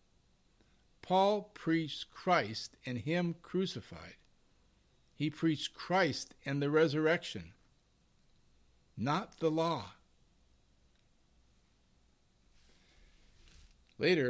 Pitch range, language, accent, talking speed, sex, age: 100-155 Hz, English, American, 65 wpm, male, 50-69